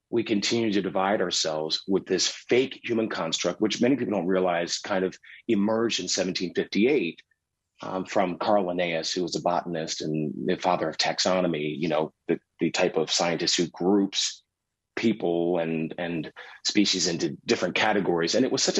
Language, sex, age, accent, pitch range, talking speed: English, male, 30-49, American, 90-110 Hz, 170 wpm